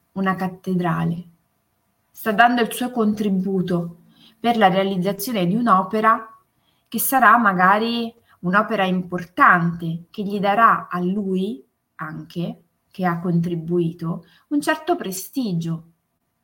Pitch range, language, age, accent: 170-215 Hz, Italian, 20-39, native